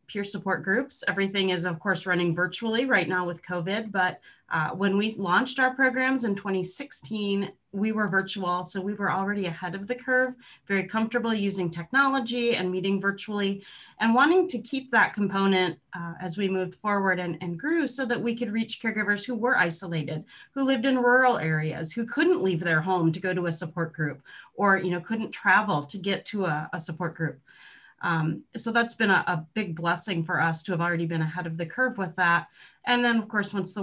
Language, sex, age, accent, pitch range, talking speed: English, female, 30-49, American, 180-230 Hz, 205 wpm